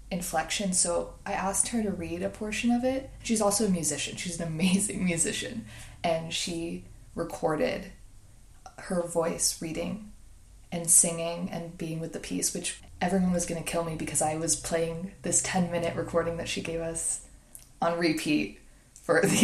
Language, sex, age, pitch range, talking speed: English, female, 20-39, 160-190 Hz, 170 wpm